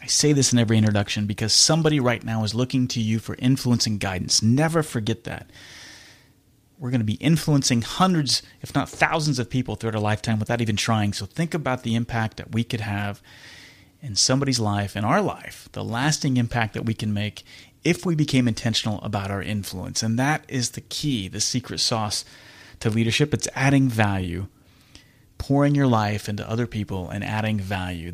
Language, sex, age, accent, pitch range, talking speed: English, male, 30-49, American, 105-130 Hz, 190 wpm